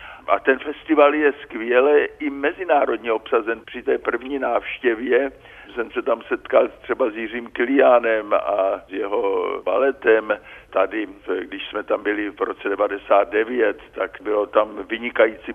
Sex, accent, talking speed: male, native, 140 wpm